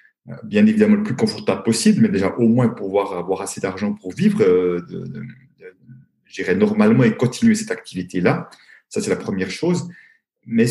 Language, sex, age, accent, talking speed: French, male, 40-59, French, 155 wpm